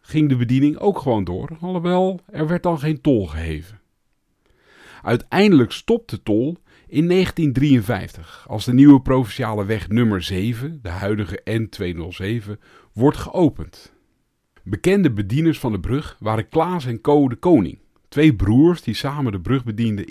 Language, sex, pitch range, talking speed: Dutch, male, 105-145 Hz, 145 wpm